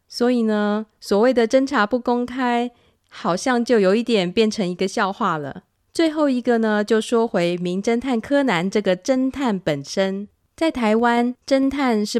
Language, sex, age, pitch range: Chinese, female, 20-39, 200-255 Hz